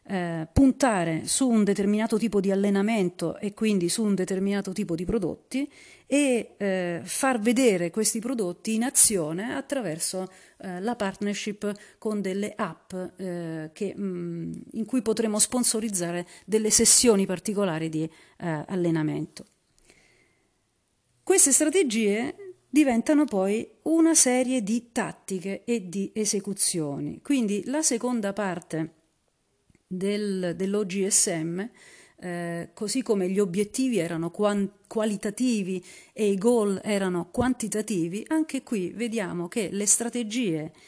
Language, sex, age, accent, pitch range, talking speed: Italian, female, 40-59, native, 180-235 Hz, 110 wpm